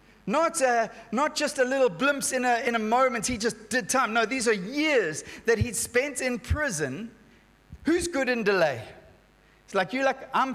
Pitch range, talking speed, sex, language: 240-290 Hz, 195 wpm, male, English